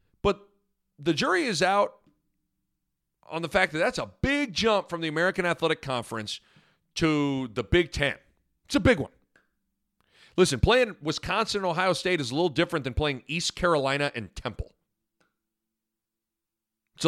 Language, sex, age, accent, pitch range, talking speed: English, male, 40-59, American, 130-190 Hz, 150 wpm